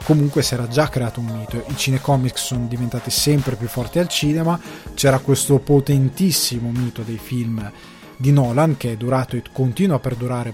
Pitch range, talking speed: 120-135 Hz, 175 wpm